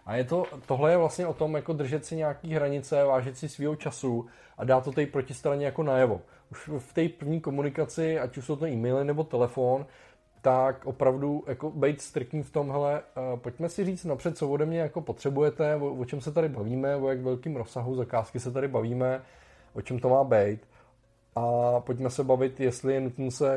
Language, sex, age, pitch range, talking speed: Czech, male, 20-39, 120-145 Hz, 200 wpm